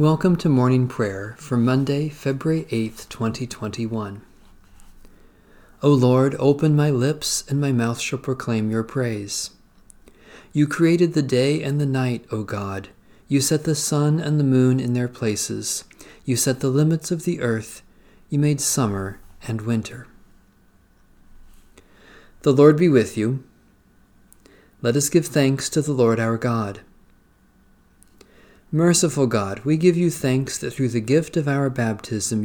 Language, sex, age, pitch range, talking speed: English, male, 40-59, 110-145 Hz, 145 wpm